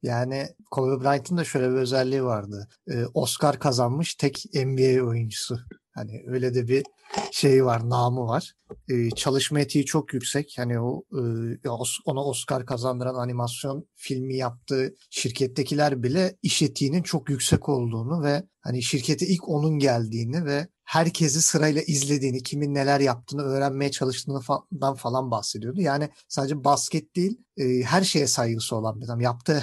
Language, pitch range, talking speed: Turkish, 125-150 Hz, 140 wpm